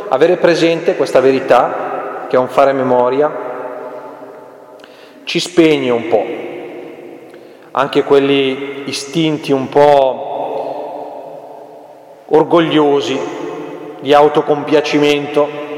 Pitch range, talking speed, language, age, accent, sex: 135-160 Hz, 80 wpm, Italian, 30-49, native, male